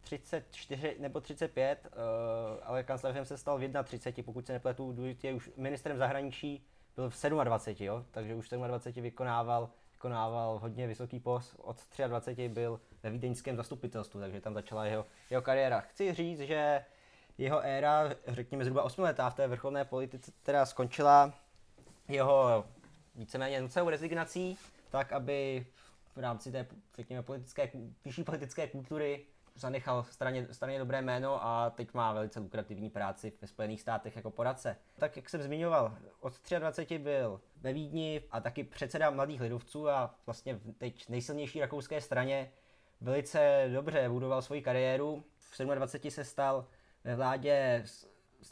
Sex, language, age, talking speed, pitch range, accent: male, Czech, 20-39, 145 wpm, 120-140 Hz, native